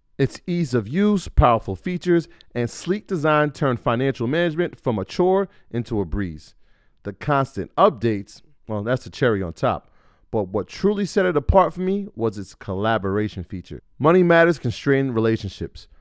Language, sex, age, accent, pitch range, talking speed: English, male, 30-49, American, 105-150 Hz, 160 wpm